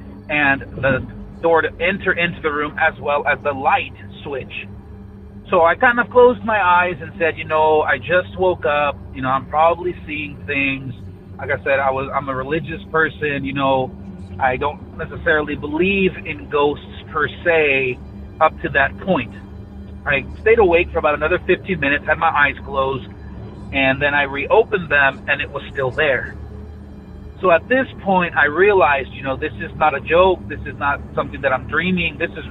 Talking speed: 185 wpm